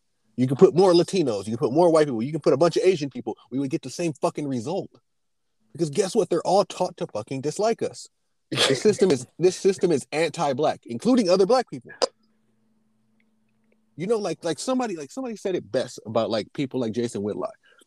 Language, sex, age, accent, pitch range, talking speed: English, male, 30-49, American, 120-170 Hz, 210 wpm